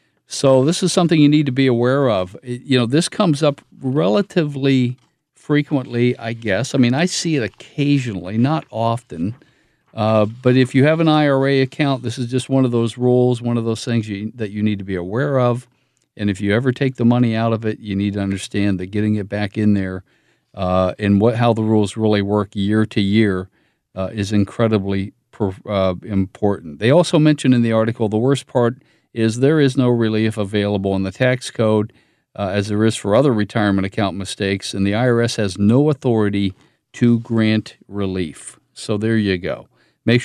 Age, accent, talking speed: 50-69, American, 200 wpm